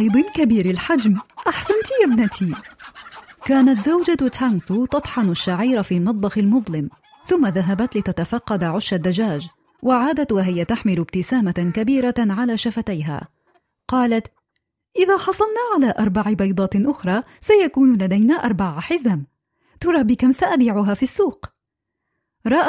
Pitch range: 200-285 Hz